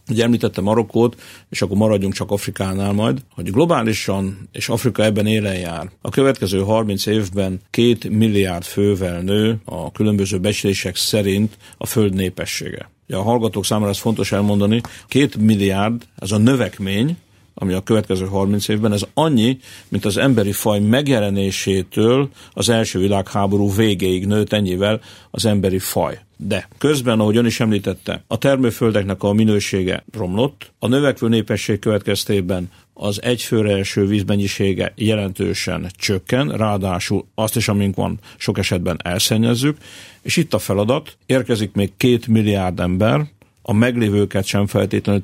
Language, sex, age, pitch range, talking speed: Hungarian, male, 50-69, 100-115 Hz, 140 wpm